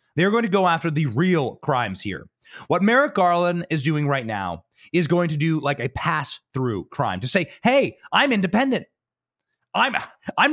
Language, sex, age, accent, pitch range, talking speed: English, male, 30-49, American, 160-220 Hz, 175 wpm